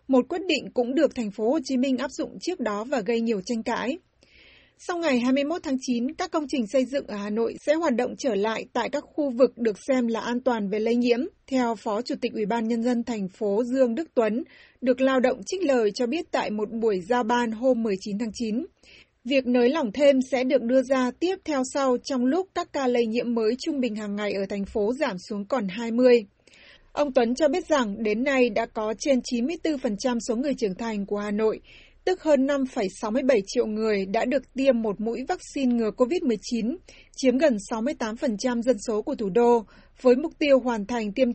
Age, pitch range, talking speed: 20-39, 225-275 Hz, 215 wpm